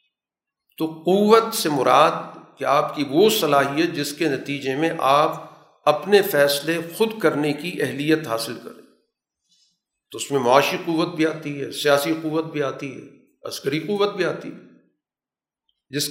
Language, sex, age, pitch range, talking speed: Urdu, male, 50-69, 145-175 Hz, 155 wpm